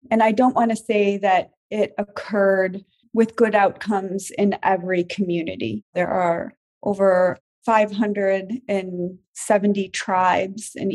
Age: 30-49